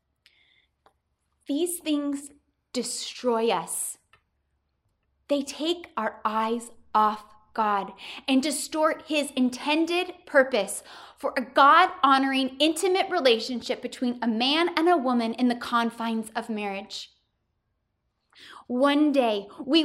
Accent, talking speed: American, 105 wpm